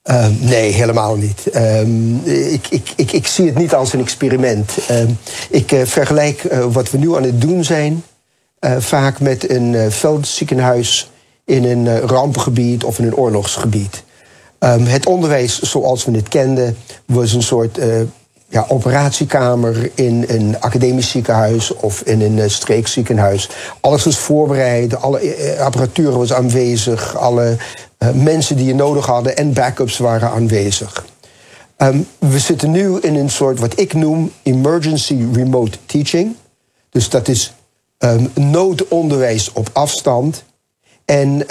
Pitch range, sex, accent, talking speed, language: 115-145 Hz, male, Dutch, 145 wpm, Dutch